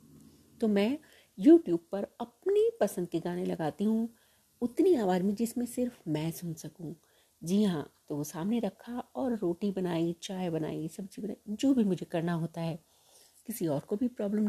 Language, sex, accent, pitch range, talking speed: Hindi, female, native, 175-245 Hz, 175 wpm